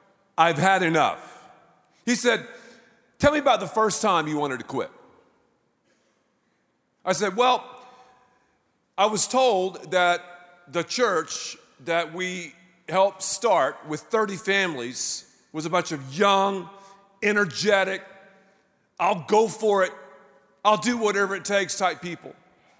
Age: 40-59